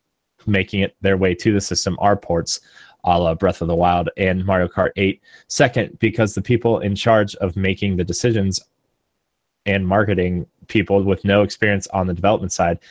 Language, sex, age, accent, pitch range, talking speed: English, male, 20-39, American, 95-105 Hz, 180 wpm